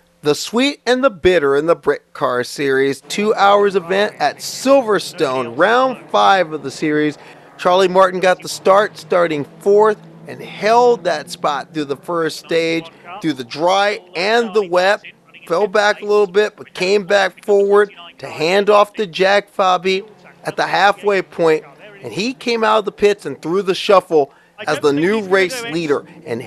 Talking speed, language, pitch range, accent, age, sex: 175 wpm, English, 165-210 Hz, American, 40-59, male